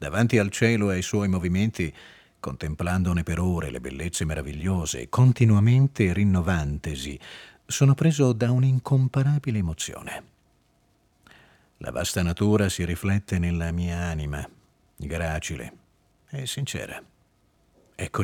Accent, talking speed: native, 105 wpm